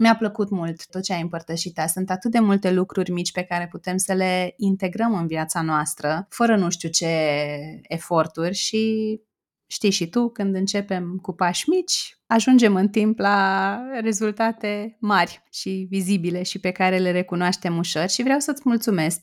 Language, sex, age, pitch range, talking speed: Romanian, female, 30-49, 175-220 Hz, 170 wpm